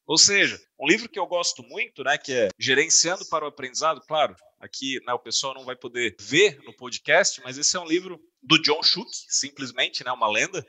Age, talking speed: 30-49, 215 wpm